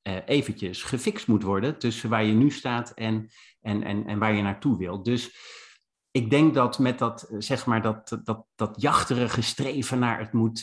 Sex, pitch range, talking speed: male, 110-130 Hz, 185 wpm